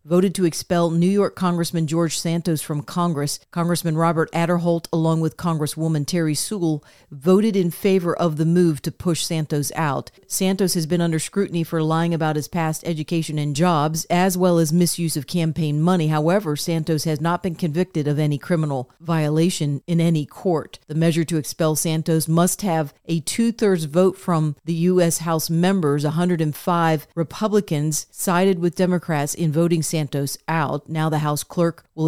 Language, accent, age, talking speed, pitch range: English, American, 40-59, 170 wpm, 155-180 Hz